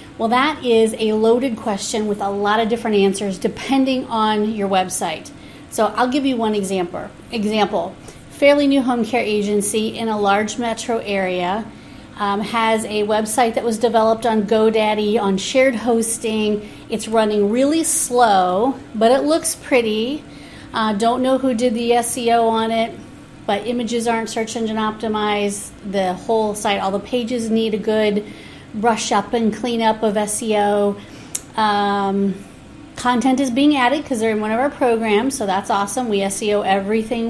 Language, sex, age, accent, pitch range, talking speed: English, female, 40-59, American, 205-245 Hz, 165 wpm